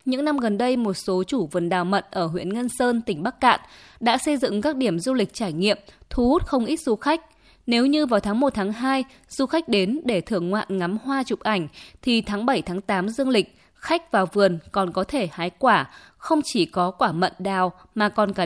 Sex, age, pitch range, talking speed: female, 20-39, 195-260 Hz, 225 wpm